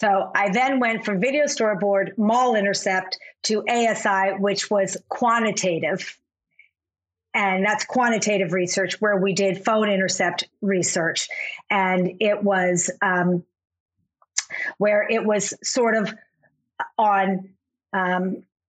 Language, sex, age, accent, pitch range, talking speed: English, female, 50-69, American, 180-210 Hz, 110 wpm